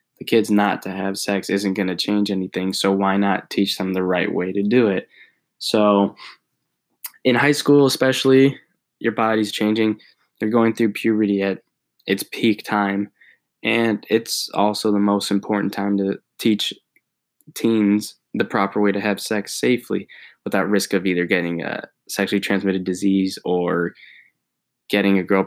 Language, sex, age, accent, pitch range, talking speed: English, male, 10-29, American, 95-110 Hz, 160 wpm